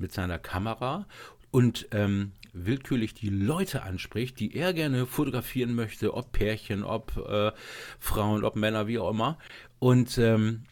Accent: German